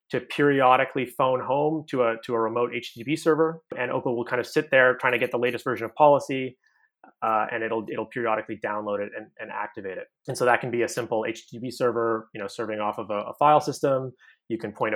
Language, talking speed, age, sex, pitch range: English, 235 wpm, 20-39, male, 115-135 Hz